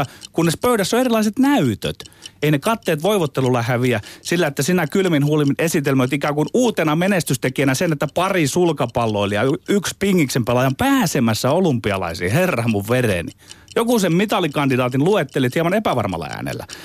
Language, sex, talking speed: Finnish, male, 140 wpm